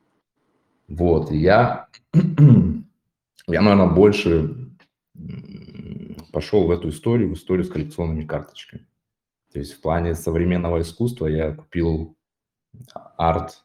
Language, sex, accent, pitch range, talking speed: Russian, male, native, 80-100 Hz, 105 wpm